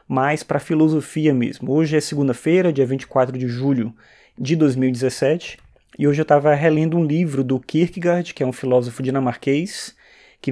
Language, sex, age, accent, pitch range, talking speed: Portuguese, male, 20-39, Brazilian, 130-170 Hz, 165 wpm